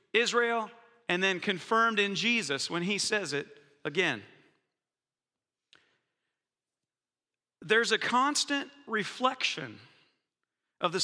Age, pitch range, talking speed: 40-59, 175-235 Hz, 90 wpm